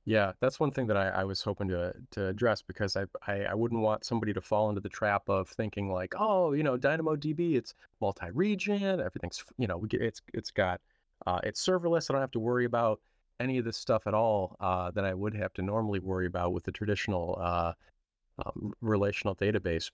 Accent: American